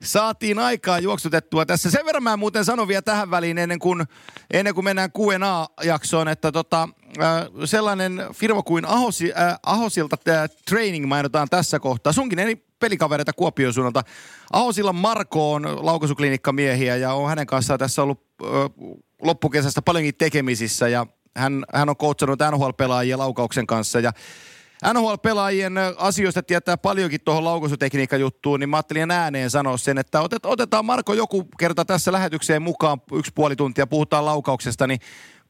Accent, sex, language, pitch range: native, male, Finnish, 145-190 Hz